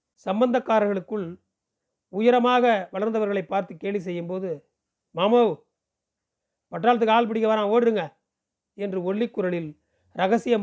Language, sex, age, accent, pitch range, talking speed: Tamil, male, 40-59, native, 165-215 Hz, 90 wpm